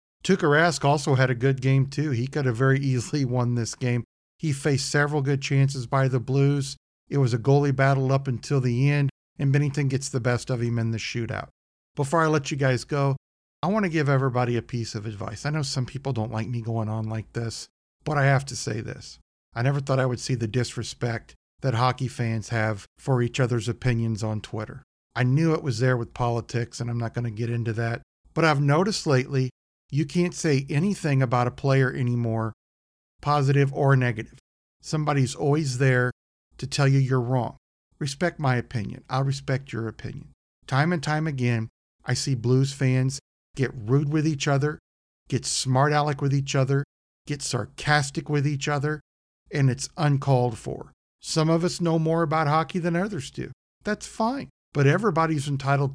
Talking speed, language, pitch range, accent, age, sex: 195 wpm, English, 120-145 Hz, American, 50-69, male